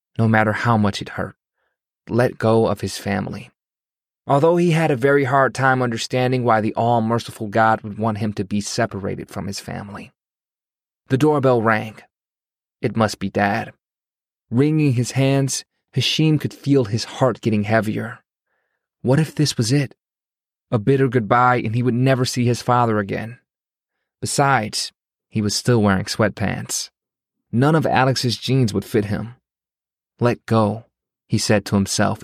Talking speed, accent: 155 wpm, American